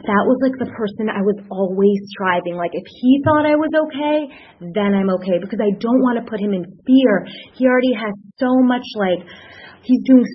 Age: 30-49